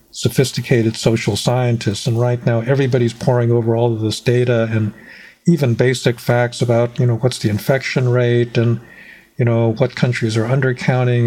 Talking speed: 165 wpm